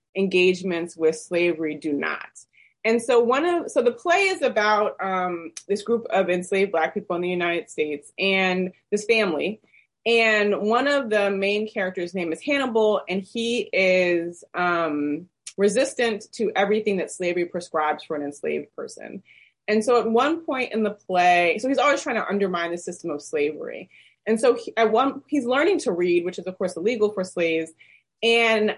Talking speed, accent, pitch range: 175 wpm, American, 175-230 Hz